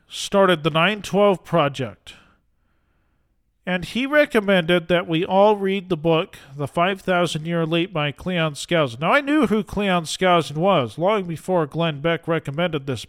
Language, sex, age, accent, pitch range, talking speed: English, male, 40-59, American, 150-200 Hz, 150 wpm